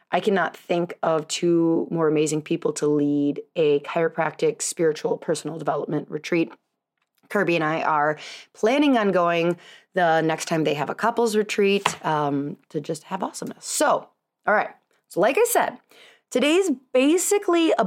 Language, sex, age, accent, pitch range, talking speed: English, female, 30-49, American, 170-245 Hz, 155 wpm